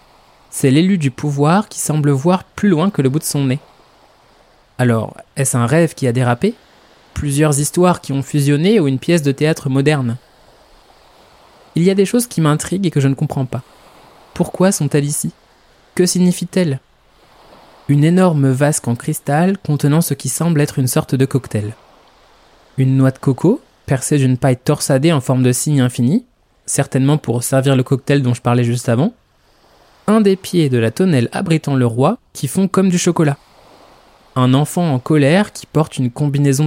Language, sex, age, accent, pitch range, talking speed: French, male, 20-39, French, 130-170 Hz, 180 wpm